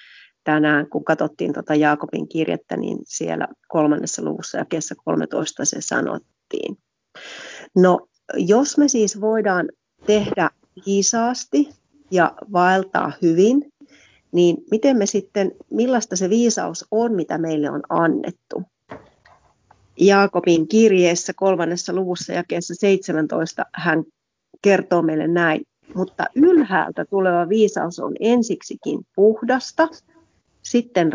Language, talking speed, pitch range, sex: Finnish, 110 wpm, 175-235 Hz, female